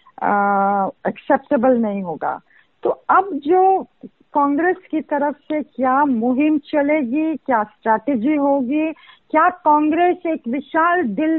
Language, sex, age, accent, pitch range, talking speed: Hindi, female, 50-69, native, 235-305 Hz, 115 wpm